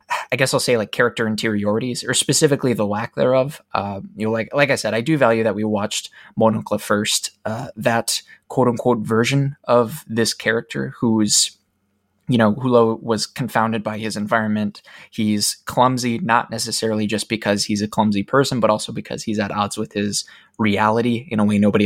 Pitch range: 100-115 Hz